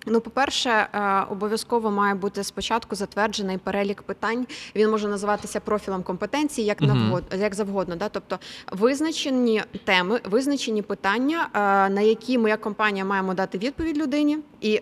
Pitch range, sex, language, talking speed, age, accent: 195-240 Hz, female, Ukrainian, 135 wpm, 20-39, native